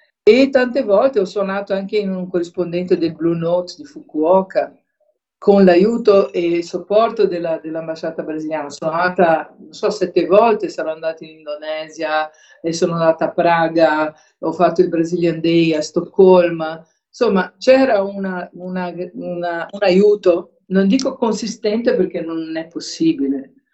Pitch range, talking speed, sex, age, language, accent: 165-215 Hz, 135 wpm, female, 50-69, Italian, native